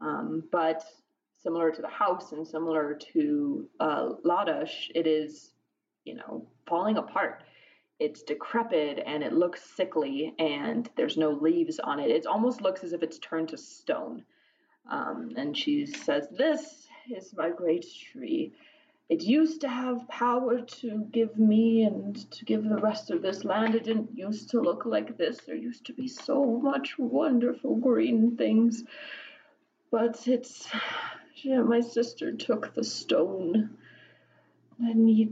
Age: 20-39